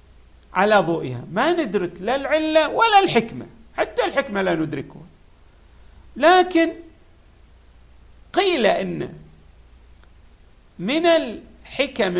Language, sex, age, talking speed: Arabic, male, 50-69, 85 wpm